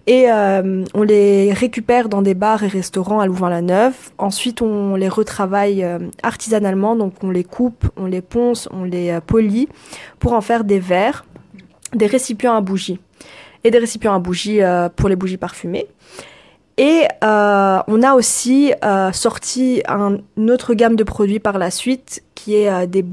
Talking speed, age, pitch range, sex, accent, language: 170 wpm, 20-39, 190-225 Hz, female, French, French